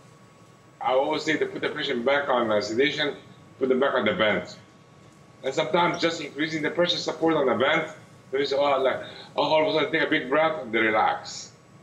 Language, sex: English, male